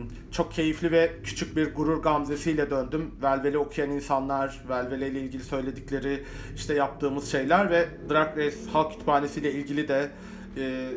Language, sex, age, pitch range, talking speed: Turkish, male, 40-59, 140-165 Hz, 135 wpm